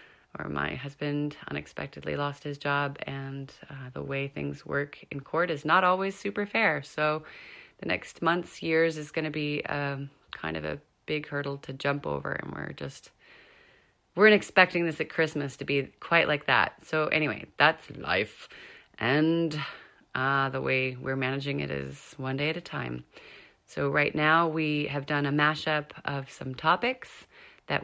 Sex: female